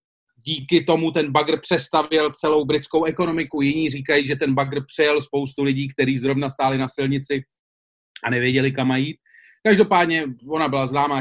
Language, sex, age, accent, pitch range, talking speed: Czech, male, 30-49, native, 130-160 Hz, 155 wpm